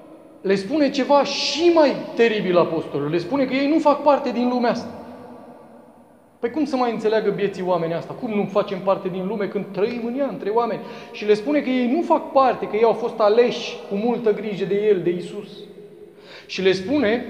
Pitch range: 180-230 Hz